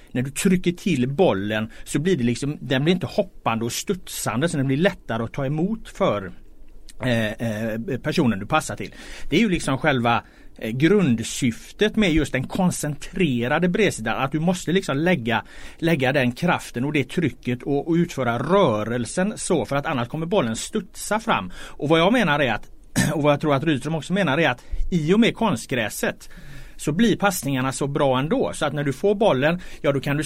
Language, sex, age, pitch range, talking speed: Swedish, male, 30-49, 130-185 Hz, 190 wpm